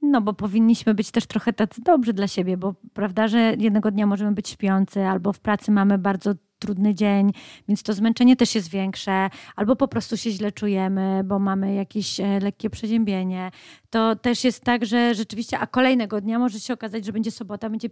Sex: female